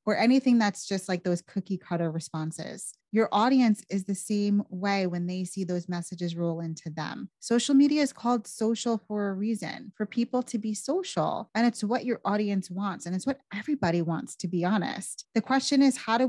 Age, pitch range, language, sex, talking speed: 20-39, 180-230 Hz, English, female, 205 wpm